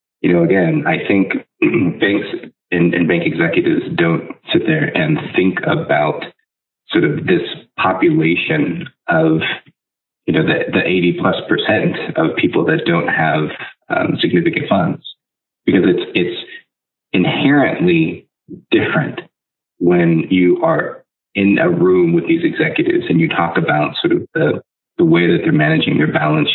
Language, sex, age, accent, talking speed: English, male, 30-49, American, 145 wpm